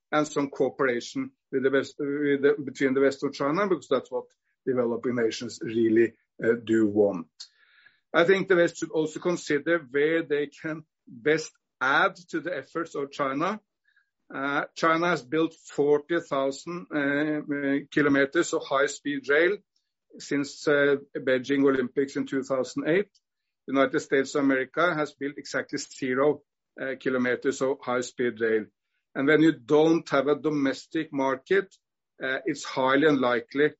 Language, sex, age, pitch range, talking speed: English, male, 60-79, 120-150 Hz, 135 wpm